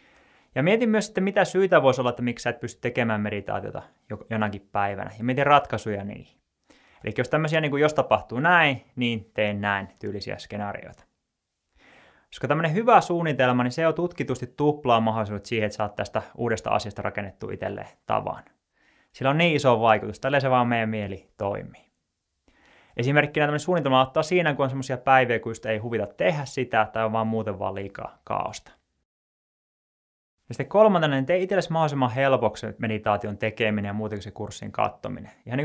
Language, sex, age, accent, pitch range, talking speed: Finnish, male, 20-39, native, 105-145 Hz, 170 wpm